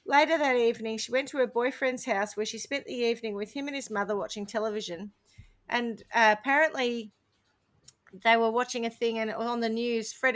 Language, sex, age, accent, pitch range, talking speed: English, female, 40-59, Australian, 185-235 Hz, 195 wpm